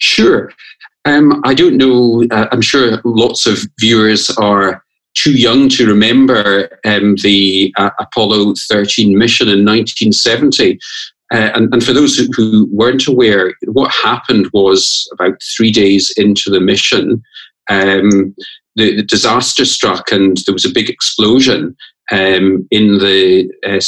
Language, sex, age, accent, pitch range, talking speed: English, male, 40-59, British, 100-120 Hz, 145 wpm